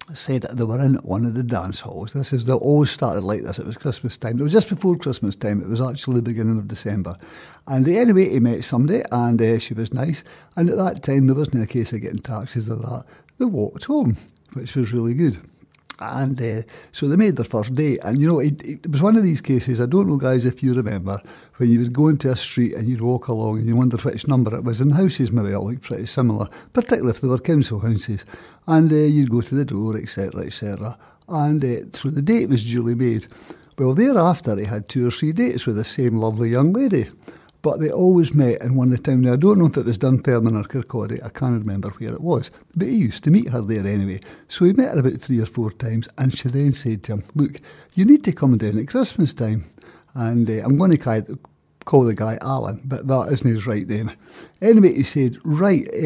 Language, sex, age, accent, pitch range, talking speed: English, male, 60-79, British, 115-150 Hz, 245 wpm